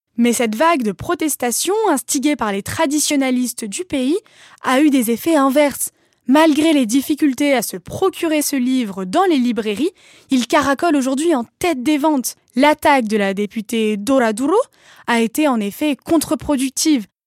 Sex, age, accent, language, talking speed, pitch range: female, 10-29, French, French, 155 wpm, 235-315 Hz